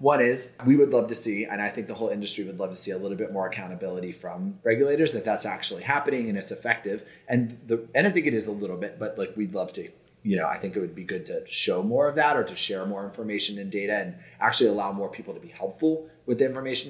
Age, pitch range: 30-49, 100-140 Hz